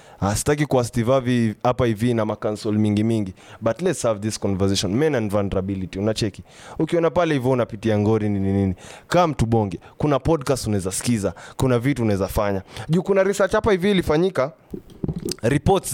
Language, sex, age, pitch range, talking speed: English, male, 20-39, 105-145 Hz, 155 wpm